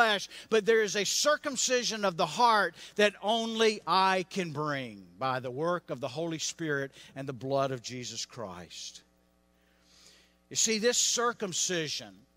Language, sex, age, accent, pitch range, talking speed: English, male, 50-69, American, 165-220 Hz, 145 wpm